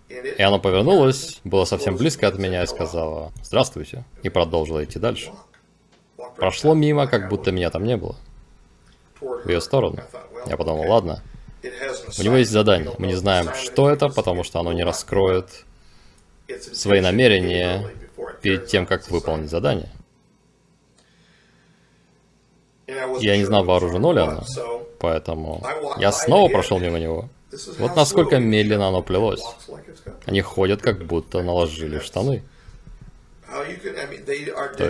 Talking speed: 125 wpm